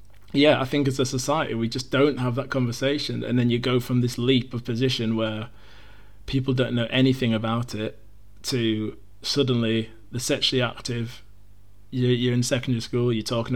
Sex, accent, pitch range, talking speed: male, British, 110-125 Hz, 175 wpm